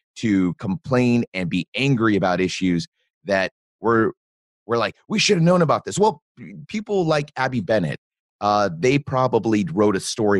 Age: 30-49